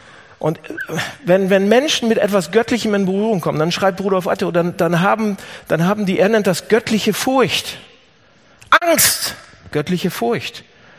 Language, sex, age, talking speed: German, male, 50-69, 140 wpm